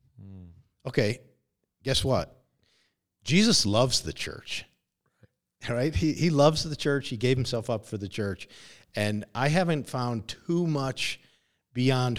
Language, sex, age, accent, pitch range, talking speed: English, male, 50-69, American, 100-130 Hz, 135 wpm